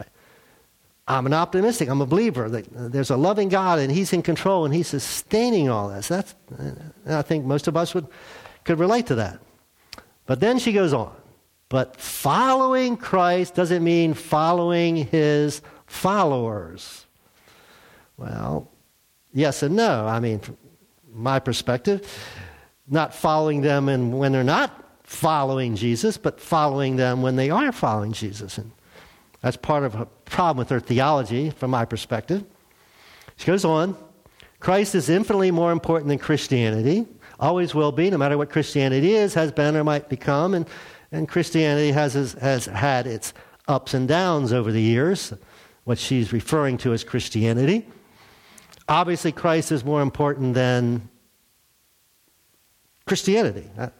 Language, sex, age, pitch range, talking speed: English, male, 50-69, 125-175 Hz, 140 wpm